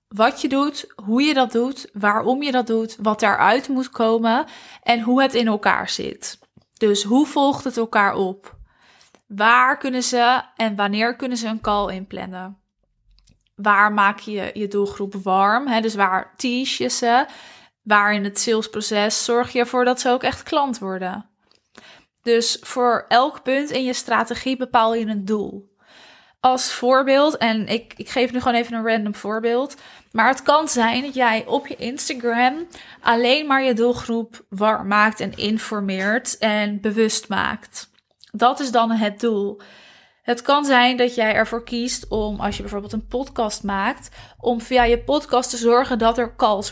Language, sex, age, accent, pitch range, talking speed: Dutch, female, 20-39, Dutch, 210-250 Hz, 170 wpm